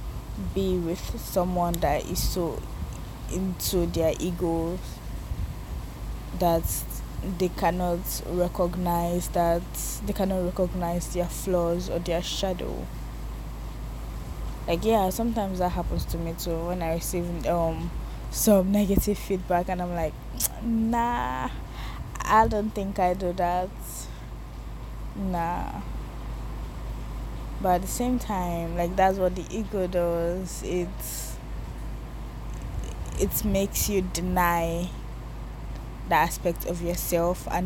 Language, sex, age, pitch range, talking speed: English, female, 20-39, 170-185 Hz, 110 wpm